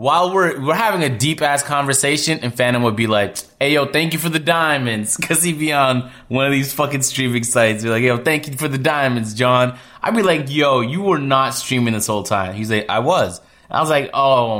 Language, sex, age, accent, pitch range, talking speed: English, male, 20-39, American, 110-150 Hz, 245 wpm